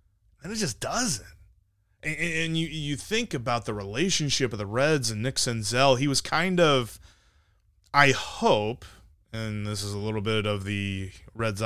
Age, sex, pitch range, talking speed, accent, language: 20-39, male, 100-135 Hz, 170 wpm, American, English